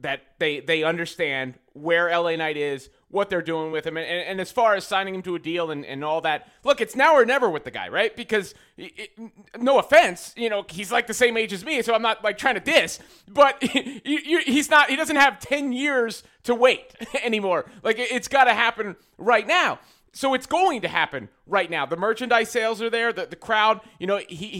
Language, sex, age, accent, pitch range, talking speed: English, male, 30-49, American, 170-235 Hz, 230 wpm